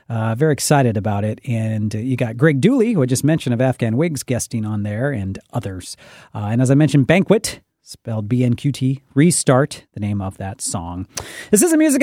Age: 40-59